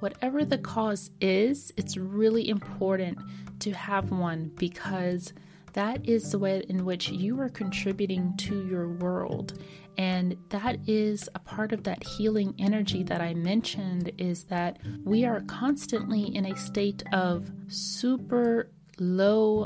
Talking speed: 140 wpm